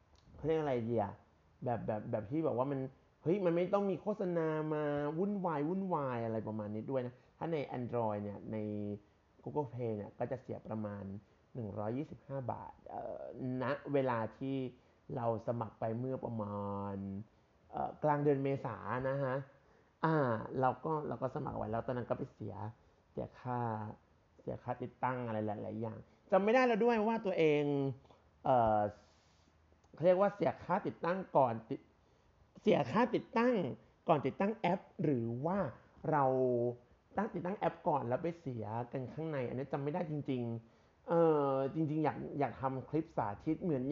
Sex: male